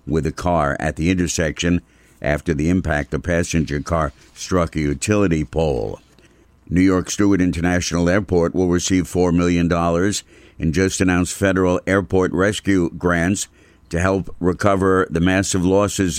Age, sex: 60-79, male